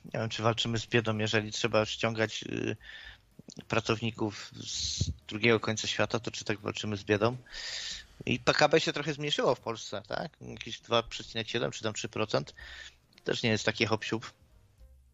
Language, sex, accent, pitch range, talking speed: Polish, male, native, 105-115 Hz, 145 wpm